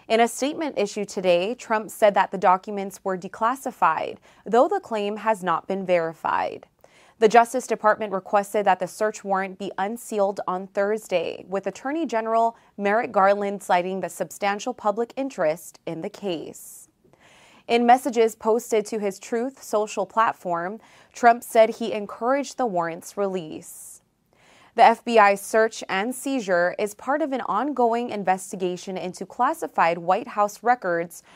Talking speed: 145 wpm